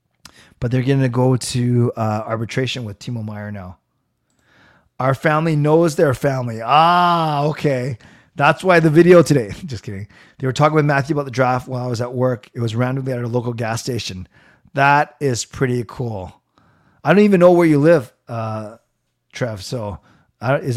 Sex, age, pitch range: male, 30-49, 120-150 Hz